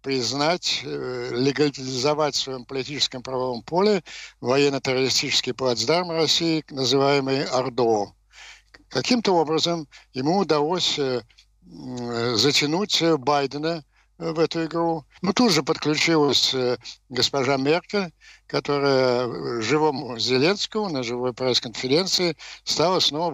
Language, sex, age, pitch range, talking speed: Ukrainian, male, 60-79, 125-155 Hz, 85 wpm